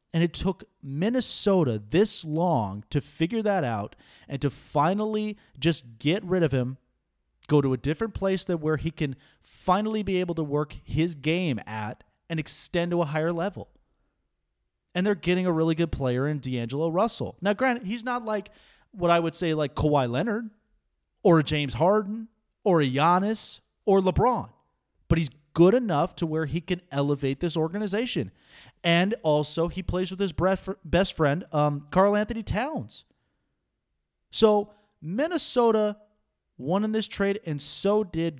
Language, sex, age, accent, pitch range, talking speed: English, male, 30-49, American, 140-200 Hz, 160 wpm